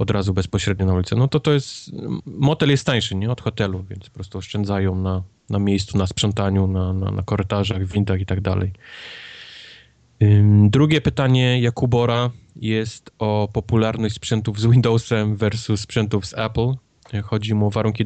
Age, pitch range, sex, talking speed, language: 20-39, 100-115 Hz, male, 165 wpm, Polish